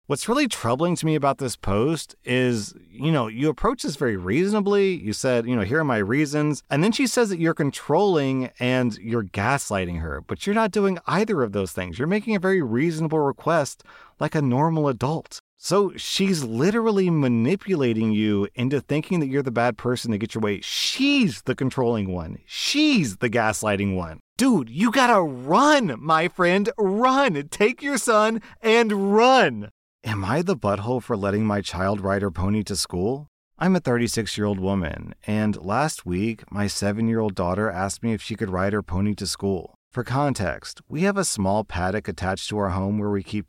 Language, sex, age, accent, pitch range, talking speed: English, male, 30-49, American, 100-165 Hz, 190 wpm